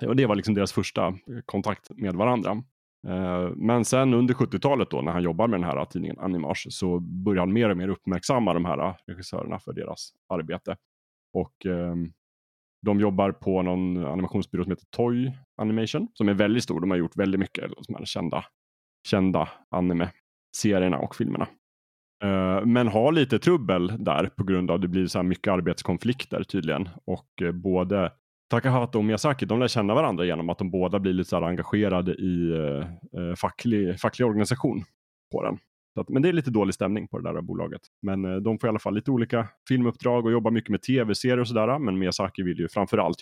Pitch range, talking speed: 90-110 Hz, 190 wpm